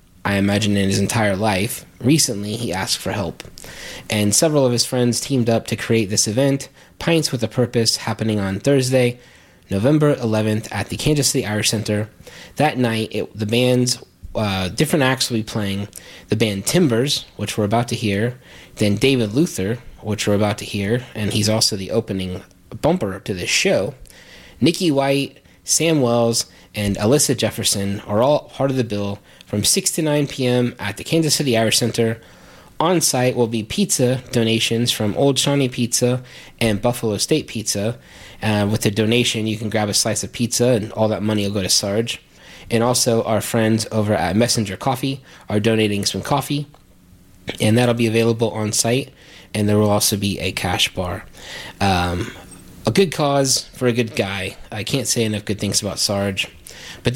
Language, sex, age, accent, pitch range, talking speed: English, male, 20-39, American, 105-125 Hz, 180 wpm